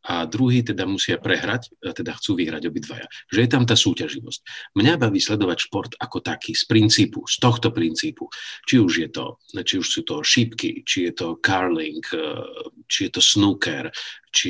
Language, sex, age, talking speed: Slovak, male, 50-69, 180 wpm